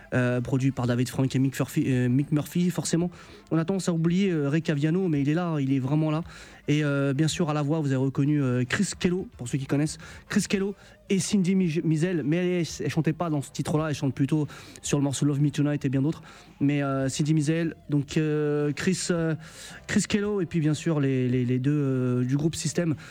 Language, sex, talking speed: French, male, 240 wpm